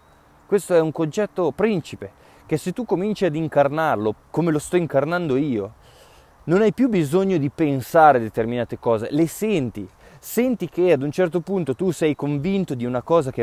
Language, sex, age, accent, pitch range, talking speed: Italian, male, 20-39, native, 120-190 Hz, 175 wpm